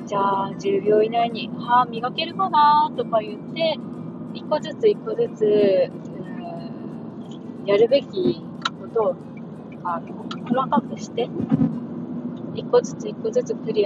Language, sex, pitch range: Japanese, female, 210-245 Hz